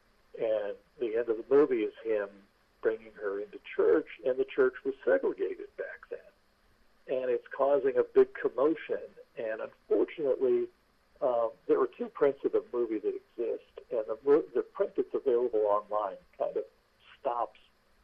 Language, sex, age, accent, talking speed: English, male, 60-79, American, 155 wpm